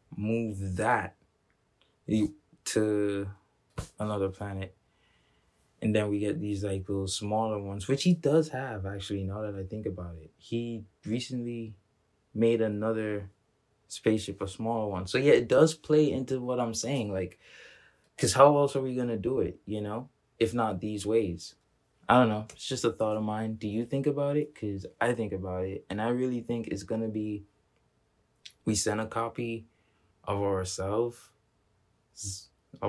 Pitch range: 100-115 Hz